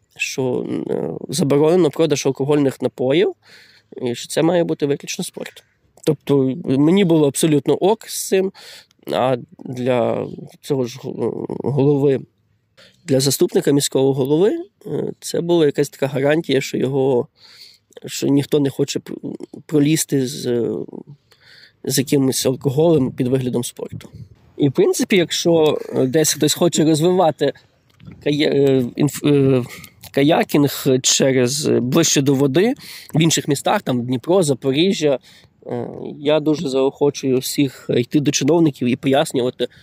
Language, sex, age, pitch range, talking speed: Ukrainian, male, 20-39, 135-155 Hz, 115 wpm